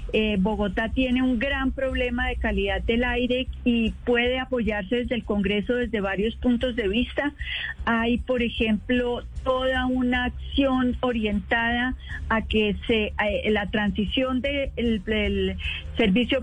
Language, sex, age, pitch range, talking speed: Spanish, female, 40-59, 220-255 Hz, 140 wpm